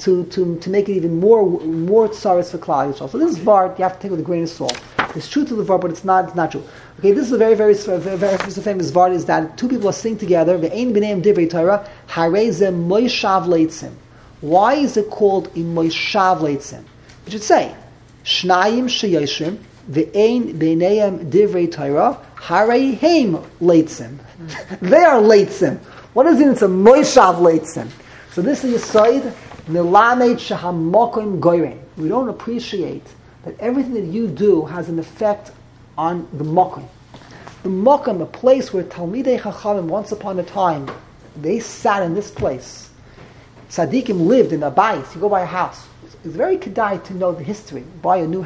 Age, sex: 40-59, male